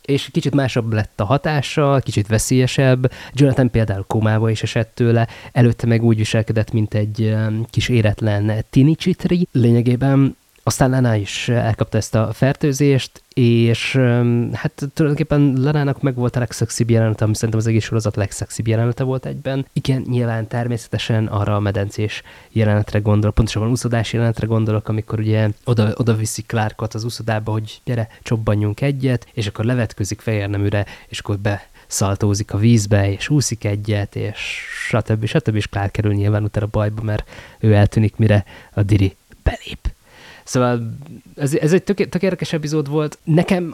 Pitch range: 110-130 Hz